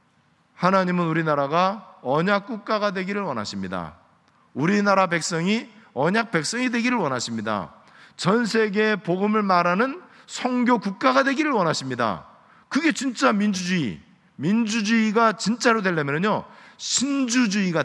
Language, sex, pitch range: Korean, male, 180-230 Hz